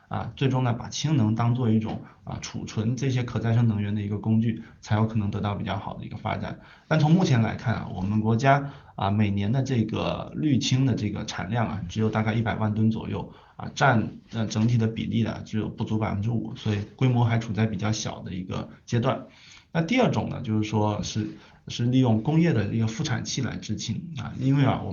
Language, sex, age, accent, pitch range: Chinese, male, 20-39, native, 110-130 Hz